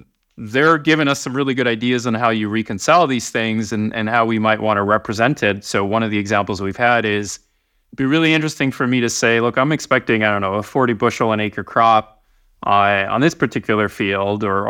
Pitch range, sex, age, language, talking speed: 105-140 Hz, male, 30-49, English, 230 wpm